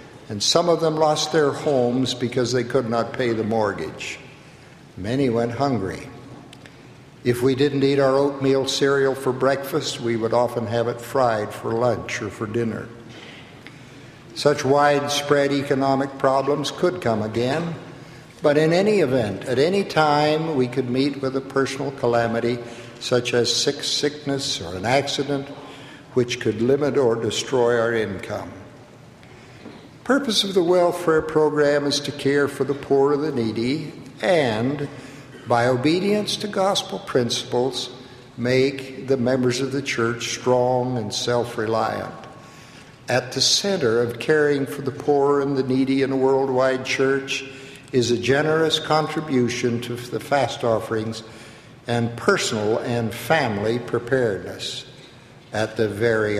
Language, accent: English, American